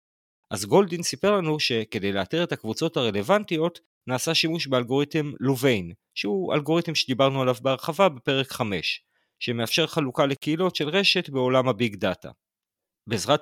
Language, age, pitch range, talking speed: Hebrew, 40-59, 120-165 Hz, 130 wpm